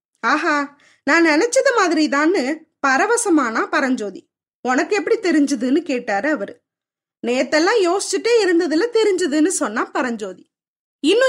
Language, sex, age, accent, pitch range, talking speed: Tamil, female, 20-39, native, 265-365 Hz, 100 wpm